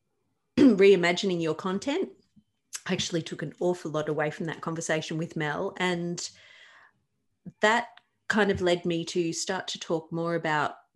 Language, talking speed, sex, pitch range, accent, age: English, 140 wpm, female, 150-195 Hz, Australian, 30-49